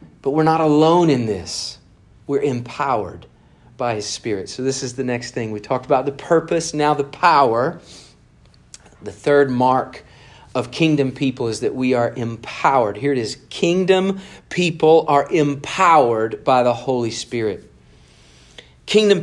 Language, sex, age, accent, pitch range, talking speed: English, male, 40-59, American, 120-155 Hz, 150 wpm